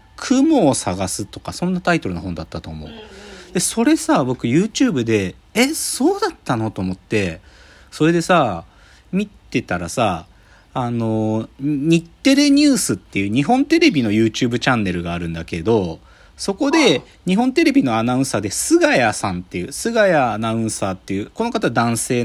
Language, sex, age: Japanese, male, 40-59